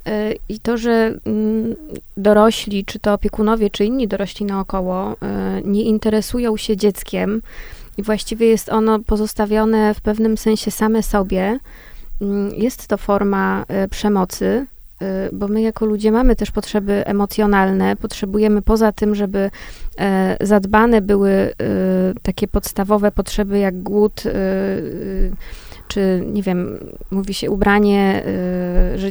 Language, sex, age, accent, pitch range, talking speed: Polish, female, 20-39, native, 200-215 Hz, 115 wpm